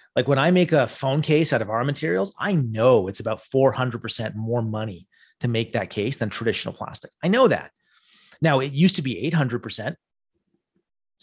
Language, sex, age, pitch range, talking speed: English, male, 30-49, 110-140 Hz, 180 wpm